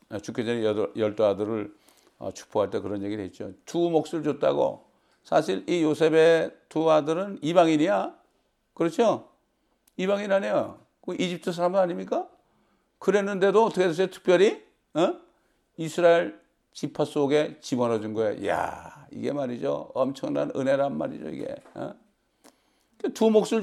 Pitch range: 150-220 Hz